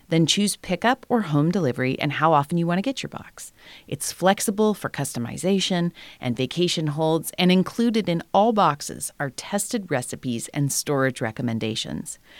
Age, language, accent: 40-59, English, American